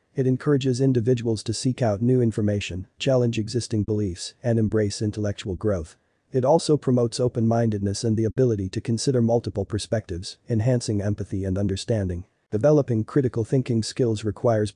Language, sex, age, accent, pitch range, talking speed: English, male, 40-59, American, 100-125 Hz, 140 wpm